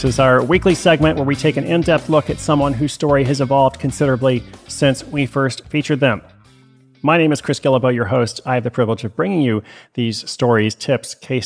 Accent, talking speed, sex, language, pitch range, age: American, 215 wpm, male, English, 115-135 Hz, 30-49